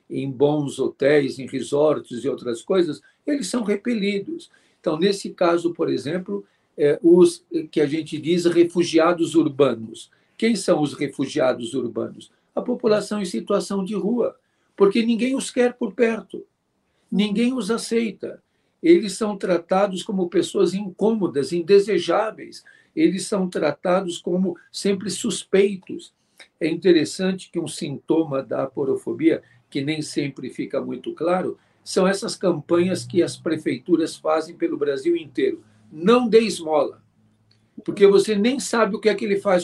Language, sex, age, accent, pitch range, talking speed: Portuguese, male, 60-79, Brazilian, 170-230 Hz, 140 wpm